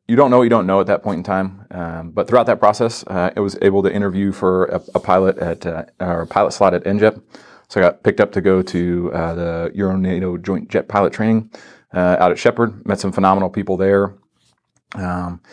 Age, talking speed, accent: 30-49, 225 wpm, American